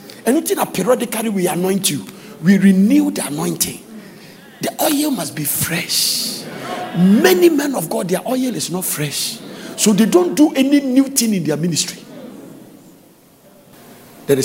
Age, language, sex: 50-69, English, male